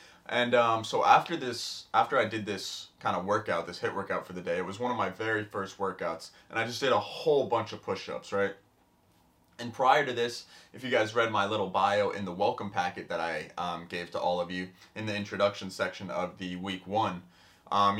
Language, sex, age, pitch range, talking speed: English, male, 20-39, 95-110 Hz, 225 wpm